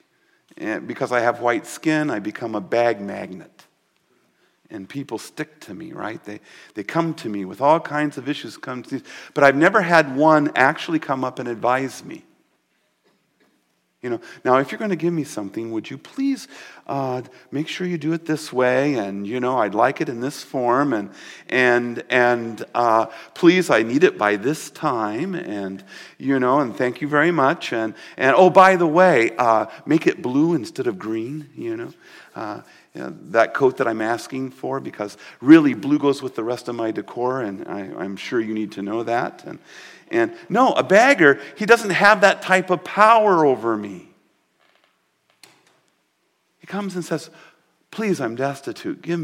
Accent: American